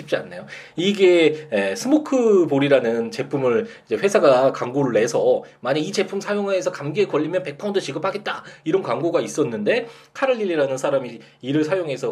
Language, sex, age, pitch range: Korean, male, 20-39, 140-220 Hz